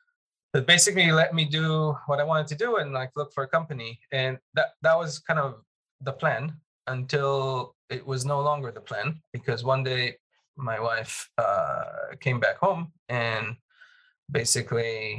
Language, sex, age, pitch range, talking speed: Hebrew, male, 20-39, 120-150 Hz, 165 wpm